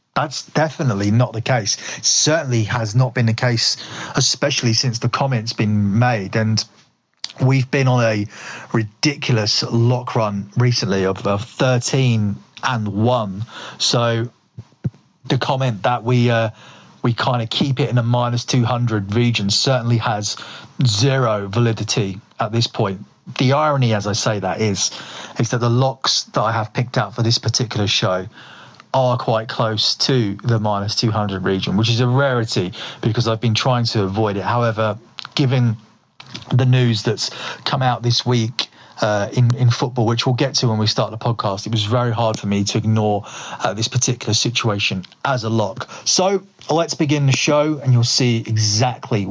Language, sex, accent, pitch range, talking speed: English, male, British, 110-130 Hz, 170 wpm